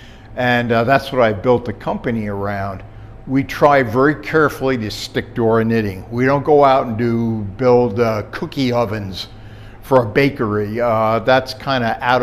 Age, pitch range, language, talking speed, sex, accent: 60-79, 110-135 Hz, English, 175 wpm, male, American